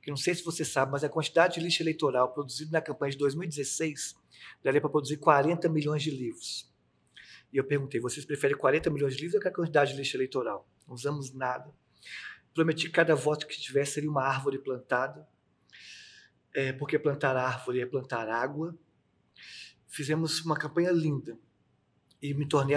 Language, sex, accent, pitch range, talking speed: Portuguese, male, Brazilian, 135-155 Hz, 170 wpm